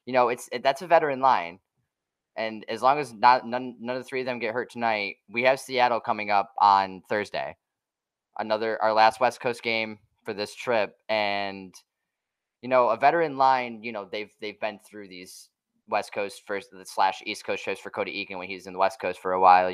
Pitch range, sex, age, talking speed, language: 100-125 Hz, male, 20-39, 220 wpm, English